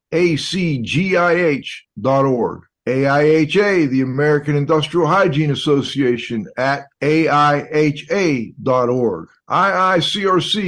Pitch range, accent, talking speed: 130-180 Hz, American, 55 wpm